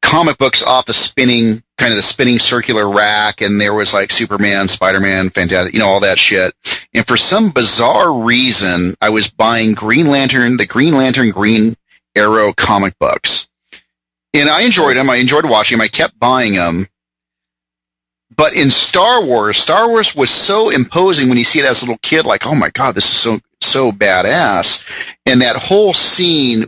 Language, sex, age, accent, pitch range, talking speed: English, male, 40-59, American, 95-125 Hz, 180 wpm